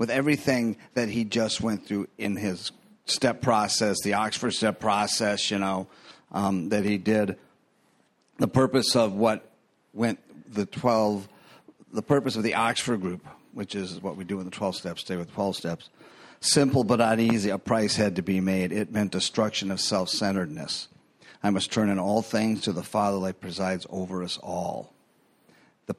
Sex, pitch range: male, 95-110 Hz